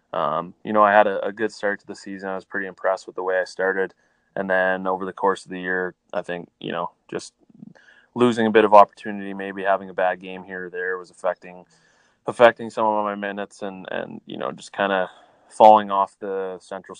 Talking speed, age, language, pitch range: 230 wpm, 20-39, English, 90-100 Hz